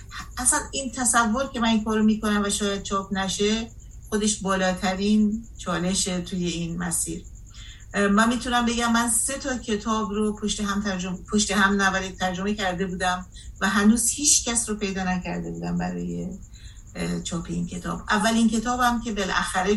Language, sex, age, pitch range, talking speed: Persian, female, 50-69, 185-230 Hz, 160 wpm